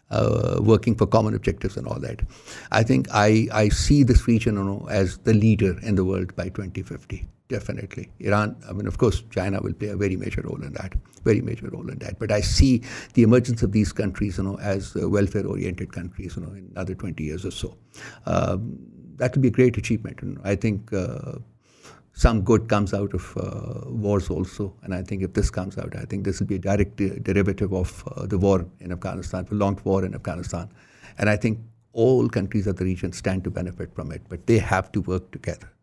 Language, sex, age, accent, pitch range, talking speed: English, male, 60-79, Indian, 95-115 Hz, 225 wpm